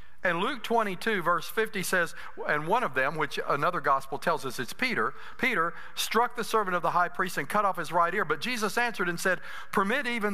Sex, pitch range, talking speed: male, 125-210 Hz, 220 wpm